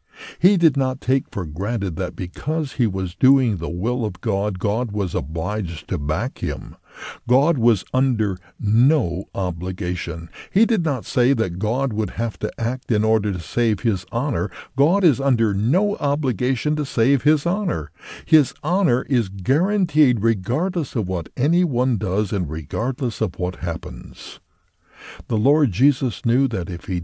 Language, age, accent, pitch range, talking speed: English, 60-79, American, 100-140 Hz, 160 wpm